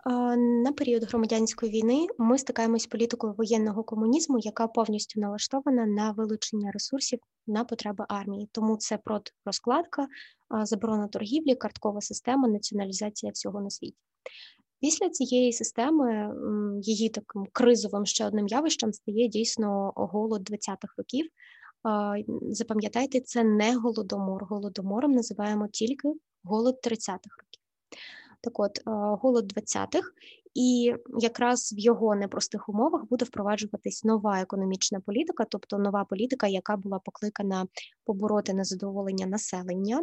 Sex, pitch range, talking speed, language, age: female, 205-240 Hz, 120 wpm, Ukrainian, 20-39